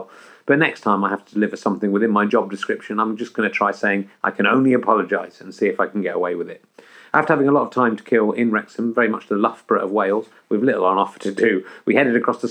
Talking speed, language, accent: 275 wpm, English, British